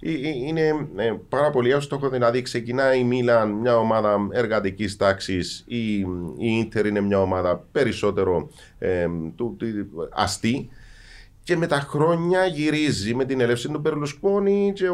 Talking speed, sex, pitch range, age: 120 wpm, male, 115-170 Hz, 30-49